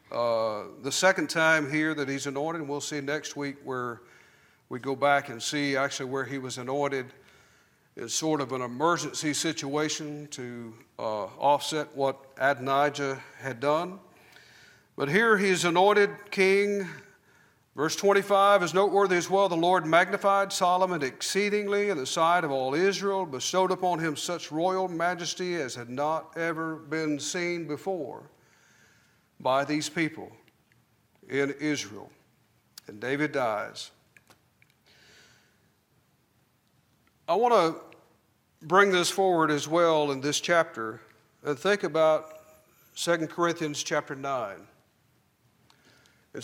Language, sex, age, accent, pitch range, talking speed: English, male, 50-69, American, 140-180 Hz, 125 wpm